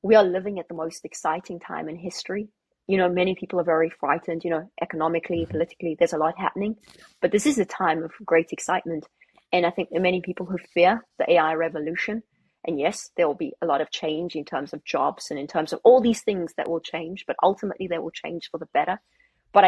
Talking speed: 235 wpm